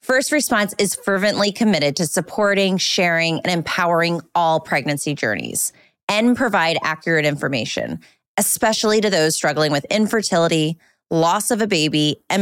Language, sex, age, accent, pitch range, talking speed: English, female, 20-39, American, 165-225 Hz, 135 wpm